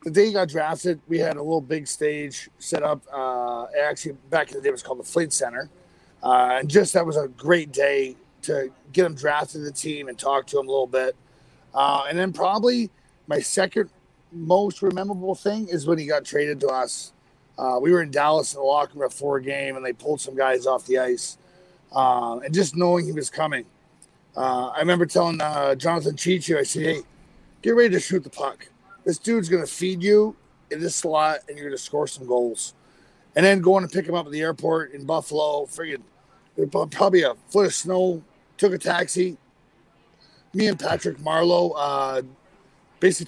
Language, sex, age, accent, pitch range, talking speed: English, male, 30-49, American, 140-180 Hz, 205 wpm